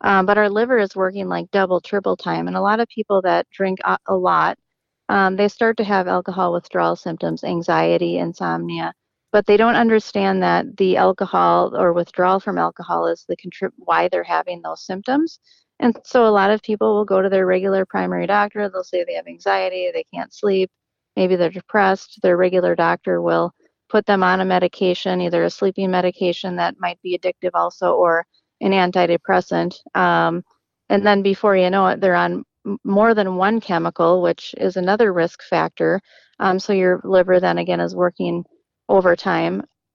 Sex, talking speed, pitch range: female, 180 wpm, 175-205 Hz